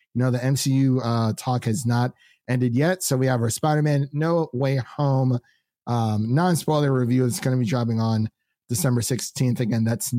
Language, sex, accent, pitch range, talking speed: English, male, American, 115-140 Hz, 175 wpm